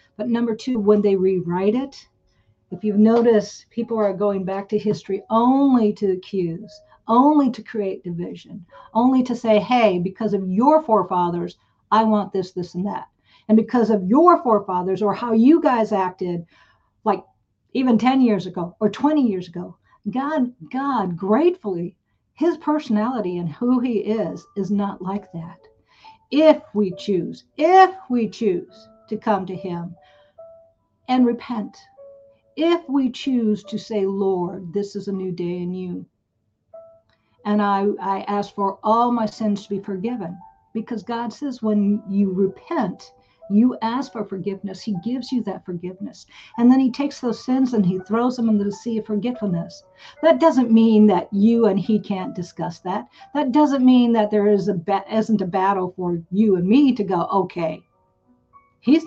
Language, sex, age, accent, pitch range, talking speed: English, female, 50-69, American, 190-245 Hz, 165 wpm